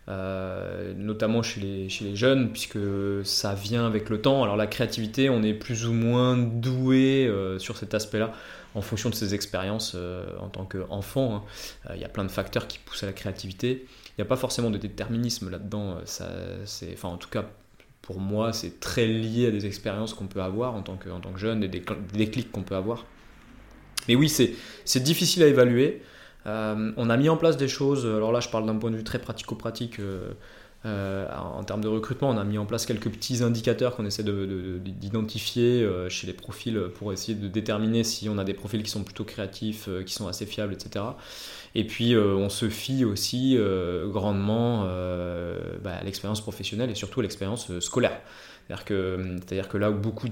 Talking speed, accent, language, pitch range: 220 wpm, French, French, 100-115 Hz